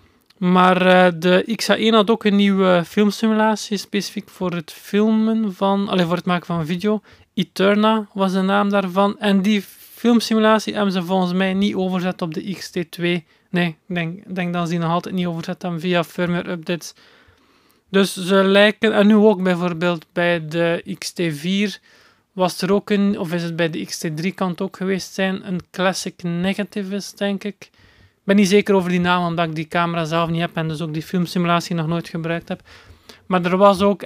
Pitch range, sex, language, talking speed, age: 175-200 Hz, male, Dutch, 190 wpm, 30-49